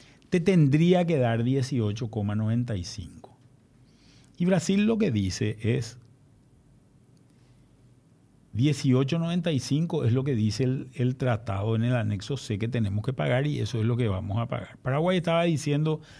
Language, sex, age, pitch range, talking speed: Spanish, male, 50-69, 115-145 Hz, 140 wpm